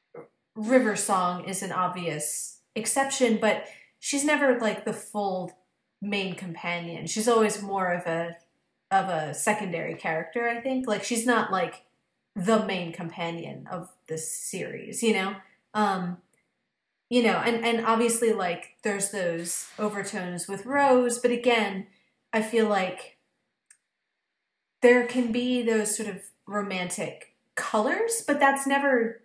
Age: 30-49